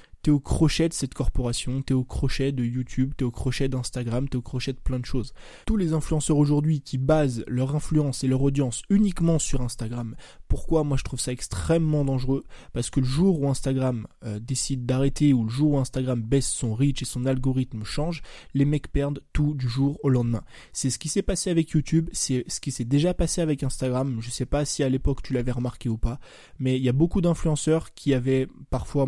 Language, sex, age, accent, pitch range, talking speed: French, male, 20-39, French, 130-155 Hz, 225 wpm